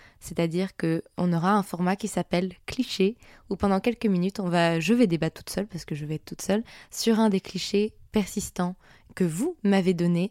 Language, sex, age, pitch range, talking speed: French, female, 20-39, 170-200 Hz, 205 wpm